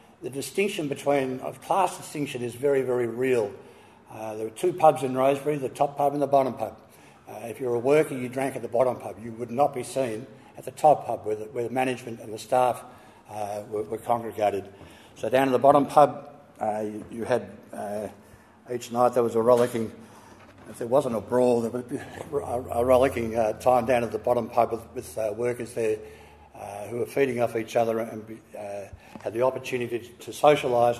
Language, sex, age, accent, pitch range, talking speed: English, male, 60-79, Australian, 110-135 Hz, 215 wpm